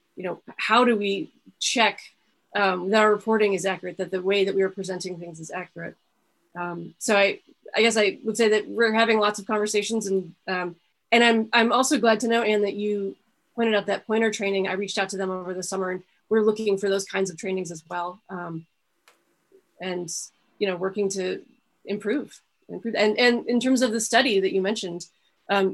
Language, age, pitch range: English, 30-49, 190-225 Hz